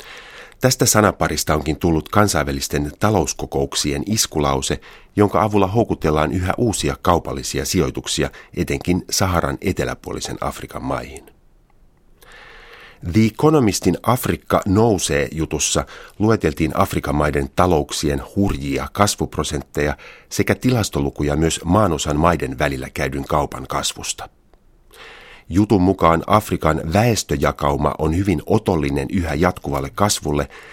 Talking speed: 95 wpm